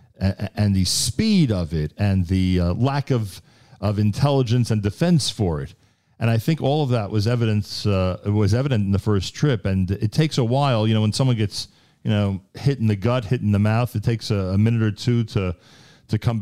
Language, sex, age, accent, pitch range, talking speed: English, male, 40-59, American, 95-125 Hz, 225 wpm